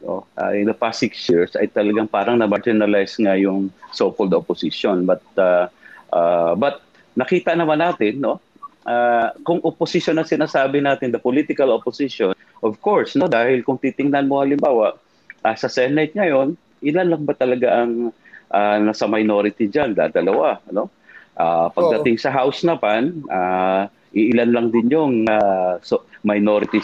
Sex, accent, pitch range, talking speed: male, native, 110-155 Hz, 150 wpm